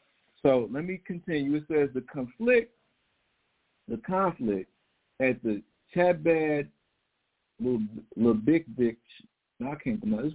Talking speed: 105 wpm